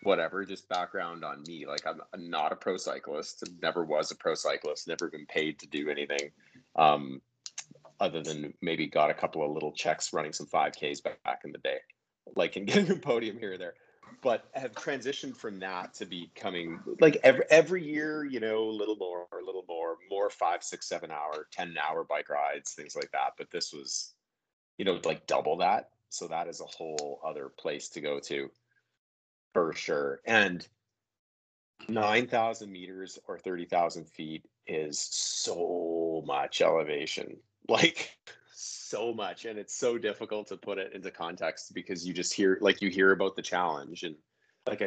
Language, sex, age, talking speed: English, male, 30-49, 180 wpm